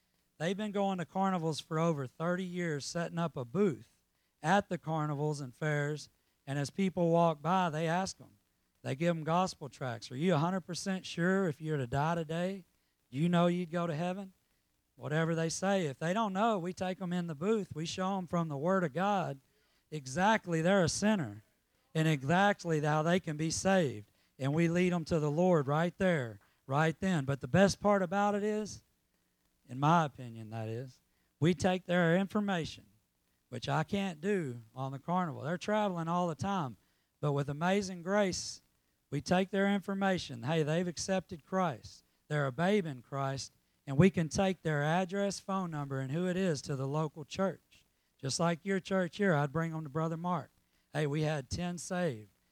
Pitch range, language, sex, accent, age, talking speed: 140-185 Hz, English, male, American, 40-59, 190 wpm